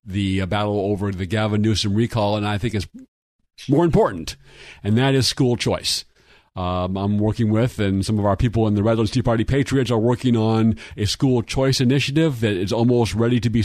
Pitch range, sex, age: 110-135 Hz, male, 50-69